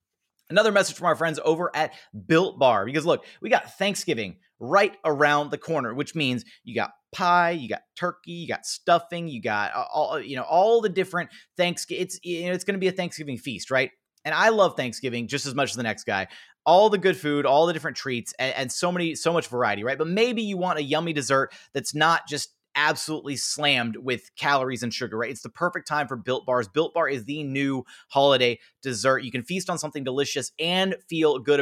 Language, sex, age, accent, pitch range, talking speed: English, male, 30-49, American, 135-175 Hz, 220 wpm